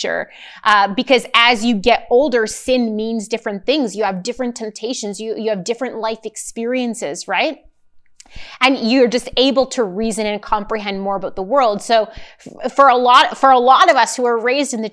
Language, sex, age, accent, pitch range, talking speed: English, female, 20-39, American, 205-245 Hz, 190 wpm